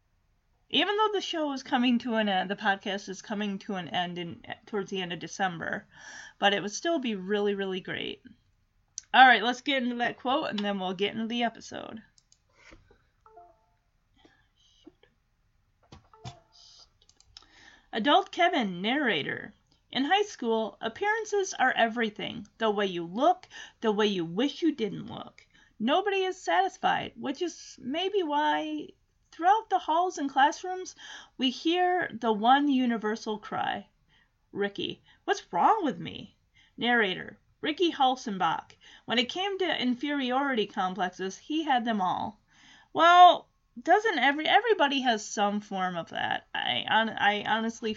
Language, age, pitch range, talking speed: English, 30-49, 205-335 Hz, 140 wpm